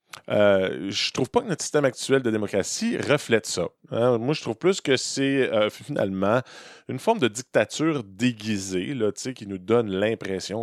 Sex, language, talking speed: male, French, 175 wpm